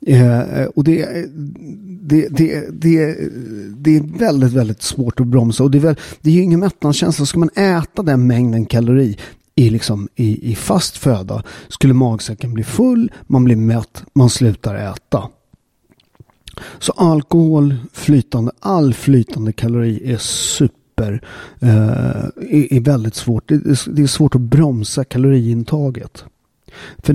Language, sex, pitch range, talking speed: Swedish, male, 120-160 Hz, 145 wpm